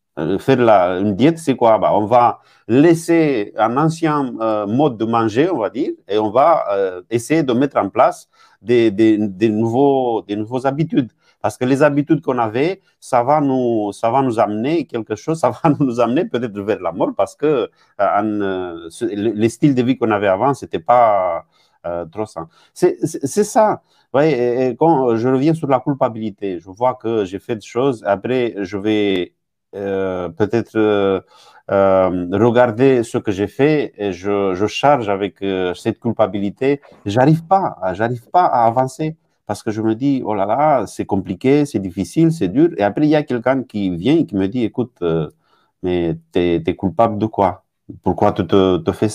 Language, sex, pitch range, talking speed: French, male, 100-135 Hz, 195 wpm